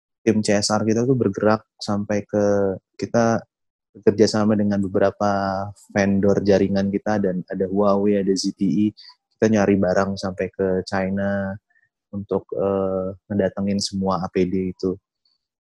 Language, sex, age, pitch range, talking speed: Indonesian, male, 20-39, 95-115 Hz, 125 wpm